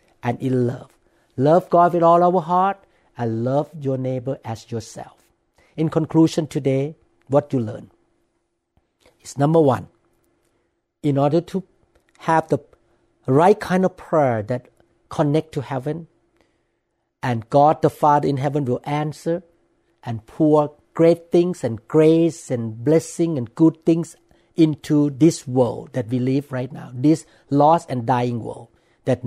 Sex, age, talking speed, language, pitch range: male, 60-79, 145 wpm, English, 125-165 Hz